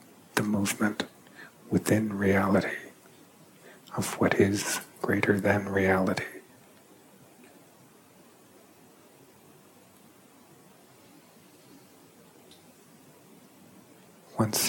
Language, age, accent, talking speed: English, 60-79, American, 45 wpm